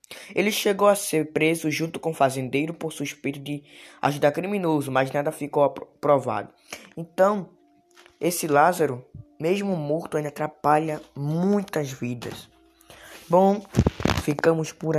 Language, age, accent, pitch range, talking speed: Portuguese, 10-29, Brazilian, 135-165 Hz, 120 wpm